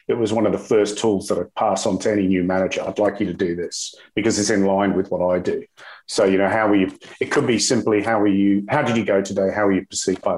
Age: 40-59